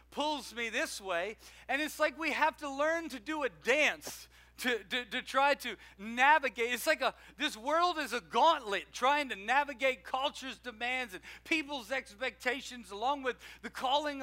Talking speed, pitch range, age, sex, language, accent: 175 wpm, 180-255 Hz, 50-69, male, English, American